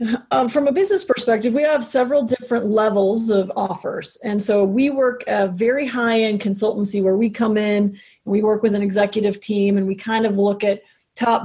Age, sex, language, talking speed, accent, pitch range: 30-49, female, English, 205 wpm, American, 200-245 Hz